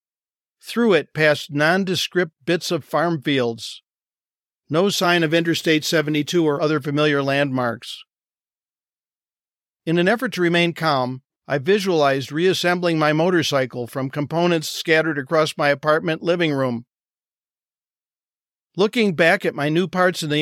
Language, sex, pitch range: English, male, 145-180 Hz